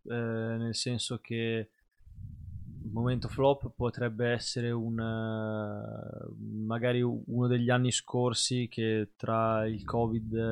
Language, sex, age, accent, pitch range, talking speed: Italian, male, 20-39, native, 105-115 Hz, 110 wpm